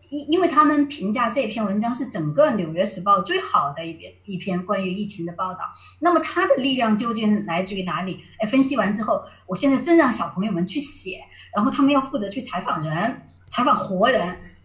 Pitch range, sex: 185-270 Hz, male